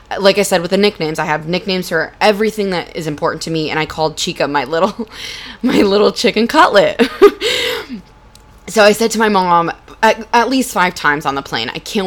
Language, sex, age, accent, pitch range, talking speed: English, female, 20-39, American, 155-205 Hz, 210 wpm